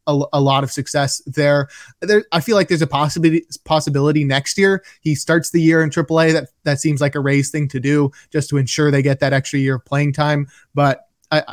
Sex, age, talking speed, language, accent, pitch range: male, 20-39, 230 wpm, English, American, 145-165 Hz